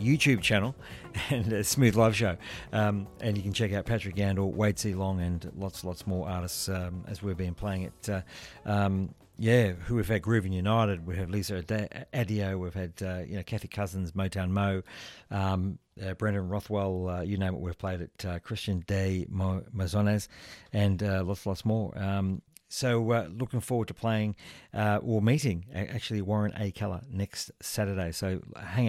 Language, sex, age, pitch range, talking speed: English, male, 50-69, 95-120 Hz, 185 wpm